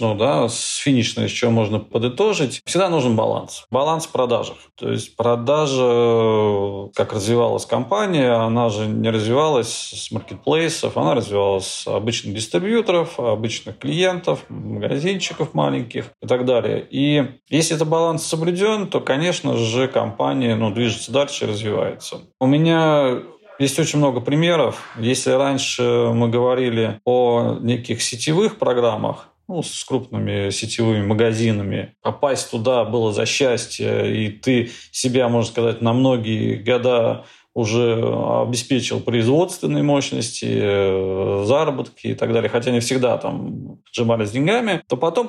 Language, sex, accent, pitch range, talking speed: Russian, male, native, 110-140 Hz, 130 wpm